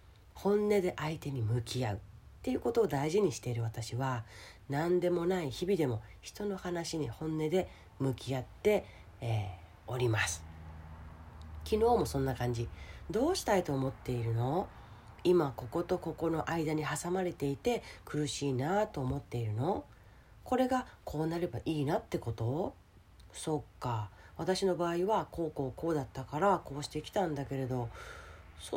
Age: 40-59